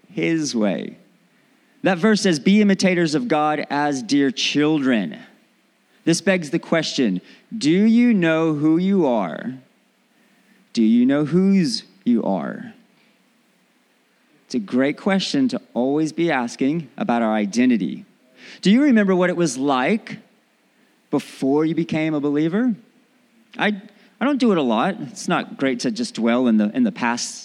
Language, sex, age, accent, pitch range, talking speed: English, male, 30-49, American, 150-230 Hz, 150 wpm